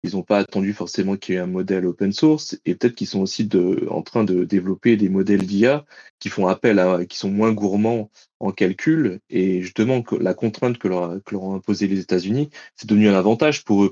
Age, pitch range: 30-49, 95-115 Hz